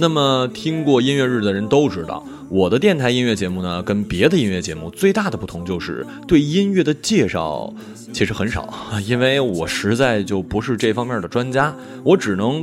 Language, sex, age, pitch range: Chinese, male, 20-39, 100-150 Hz